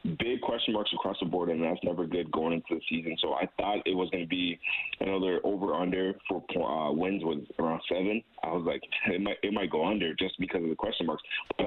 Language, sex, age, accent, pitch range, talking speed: English, male, 30-49, American, 85-95 Hz, 245 wpm